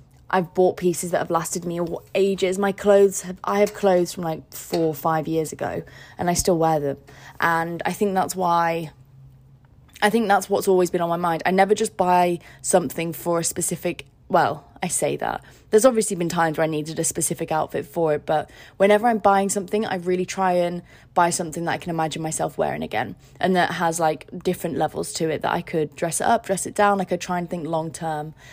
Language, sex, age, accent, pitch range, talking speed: English, female, 20-39, British, 160-190 Hz, 220 wpm